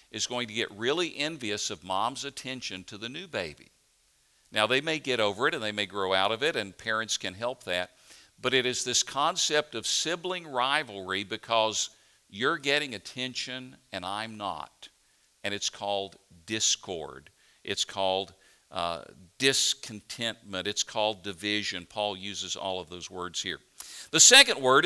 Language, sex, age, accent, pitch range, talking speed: English, male, 50-69, American, 105-155 Hz, 160 wpm